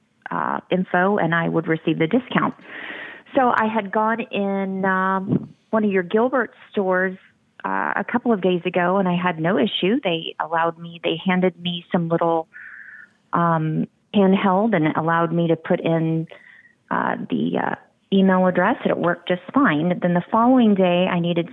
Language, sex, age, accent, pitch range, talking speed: English, female, 30-49, American, 175-210 Hz, 175 wpm